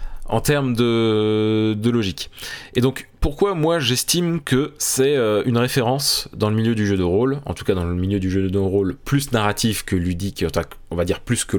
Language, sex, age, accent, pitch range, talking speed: French, male, 20-39, French, 95-130 Hz, 205 wpm